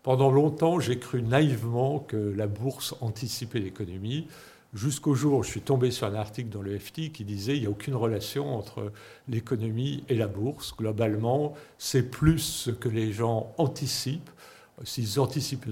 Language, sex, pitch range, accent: French, male, 110-140 Hz, French